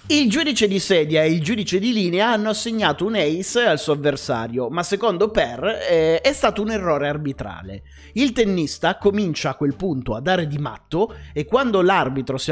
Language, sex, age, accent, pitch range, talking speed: Italian, male, 30-49, native, 135-195 Hz, 180 wpm